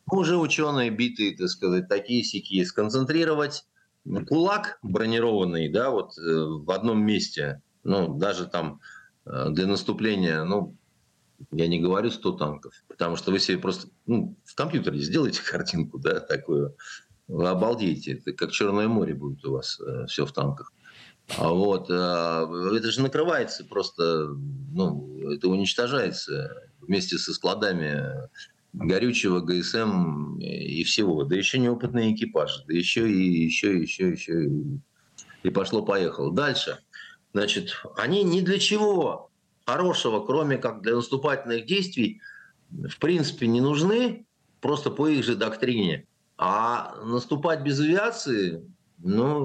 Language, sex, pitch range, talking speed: Russian, male, 90-145 Hz, 125 wpm